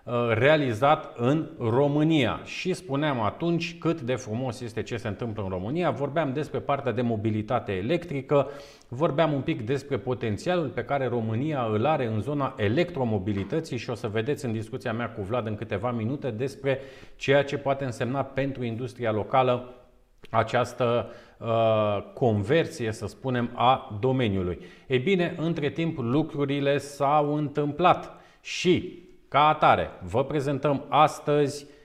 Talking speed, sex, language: 140 wpm, male, Romanian